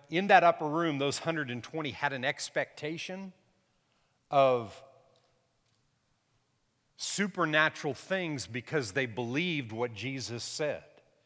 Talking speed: 95 wpm